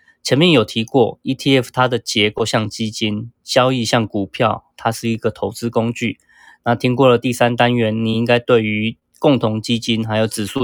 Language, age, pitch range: Chinese, 20-39, 110-125 Hz